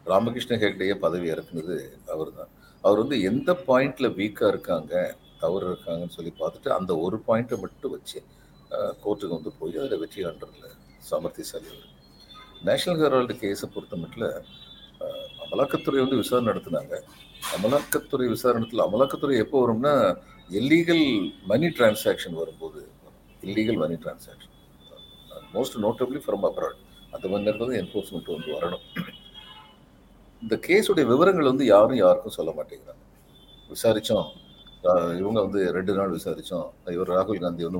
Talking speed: 120 wpm